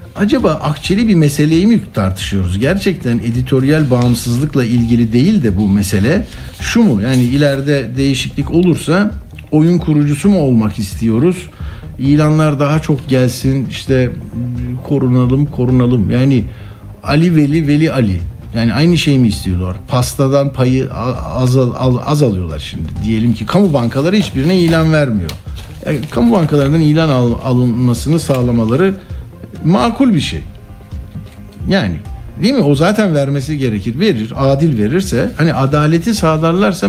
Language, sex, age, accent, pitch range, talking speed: Turkish, male, 60-79, native, 115-150 Hz, 125 wpm